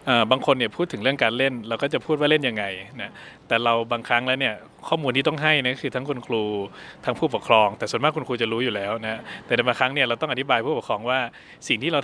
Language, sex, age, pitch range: Thai, male, 20-39, 115-140 Hz